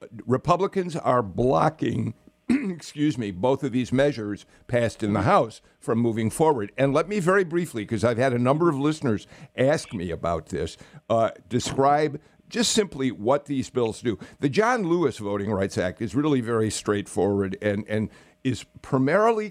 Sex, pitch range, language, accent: male, 110-145 Hz, English, American